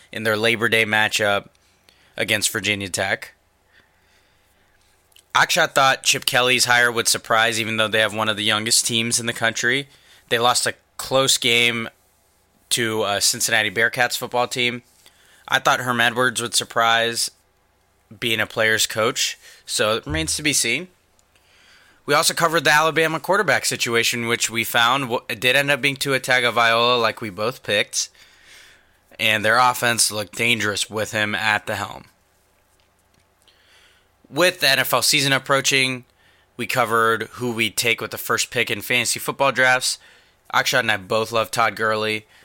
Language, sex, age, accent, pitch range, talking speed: English, male, 20-39, American, 105-120 Hz, 165 wpm